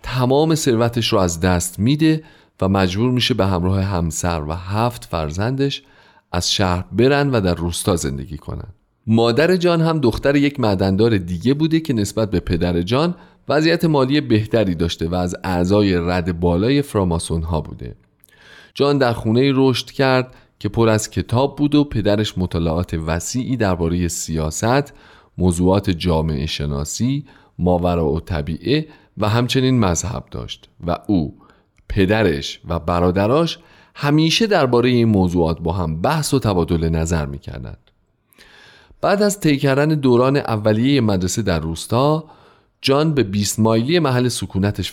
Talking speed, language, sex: 135 wpm, Persian, male